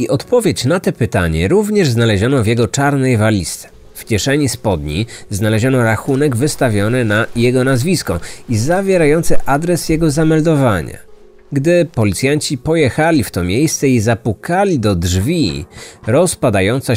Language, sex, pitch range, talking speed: Polish, male, 105-145 Hz, 125 wpm